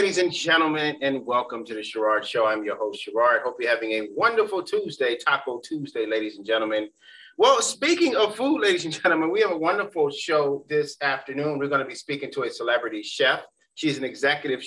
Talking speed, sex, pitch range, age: 205 wpm, male, 135-190 Hz, 30-49